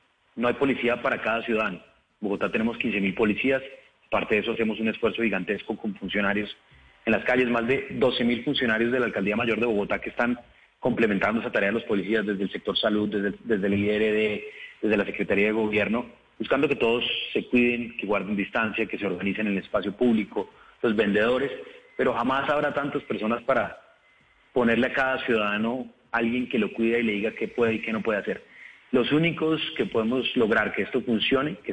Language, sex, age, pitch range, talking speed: Spanish, male, 30-49, 110-135 Hz, 195 wpm